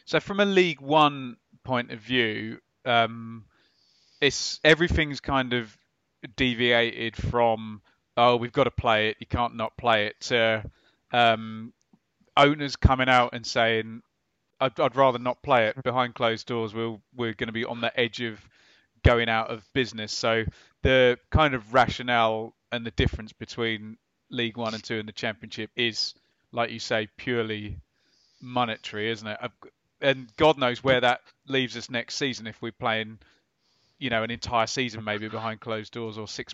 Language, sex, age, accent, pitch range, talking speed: English, male, 30-49, British, 110-130 Hz, 170 wpm